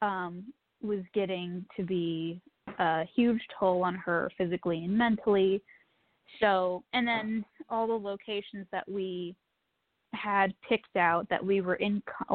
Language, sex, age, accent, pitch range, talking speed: English, female, 10-29, American, 185-225 Hz, 140 wpm